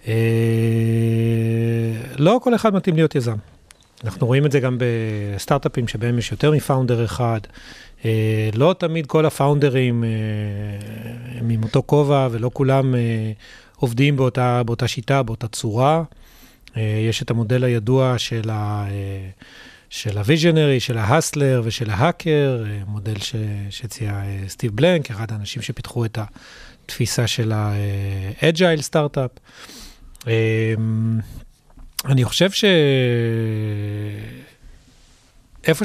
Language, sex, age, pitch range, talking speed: Hebrew, male, 30-49, 110-140 Hz, 110 wpm